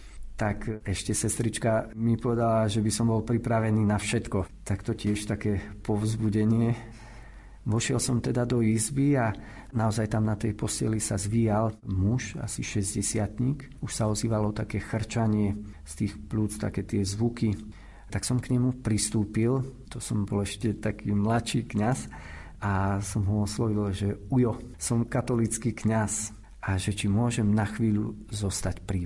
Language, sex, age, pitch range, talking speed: Slovak, male, 50-69, 100-115 Hz, 150 wpm